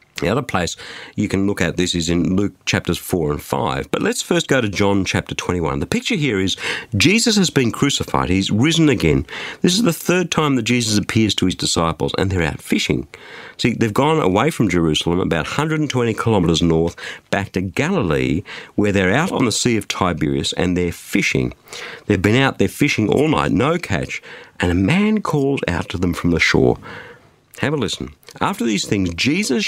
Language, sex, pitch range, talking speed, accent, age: English, male, 90-135 Hz, 200 wpm, Australian, 50-69